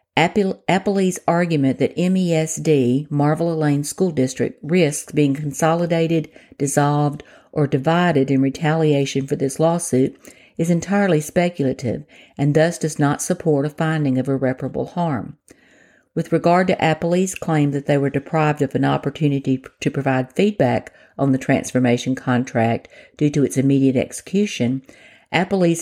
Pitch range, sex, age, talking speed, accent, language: 135-170 Hz, female, 50-69, 130 wpm, American, English